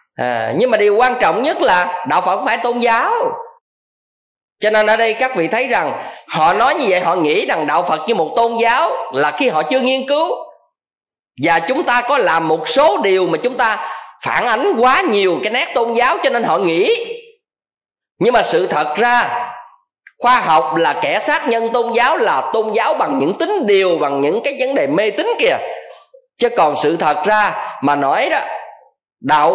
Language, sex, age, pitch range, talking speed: Vietnamese, male, 20-39, 190-310 Hz, 205 wpm